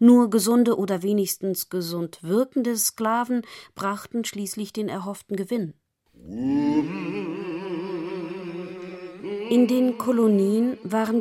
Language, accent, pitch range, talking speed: German, German, 170-220 Hz, 85 wpm